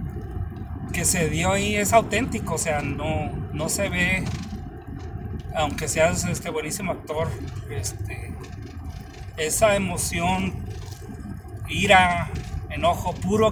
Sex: male